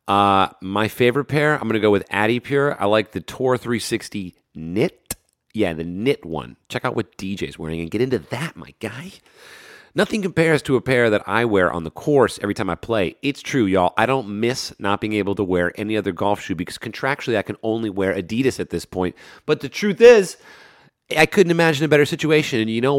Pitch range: 100-140 Hz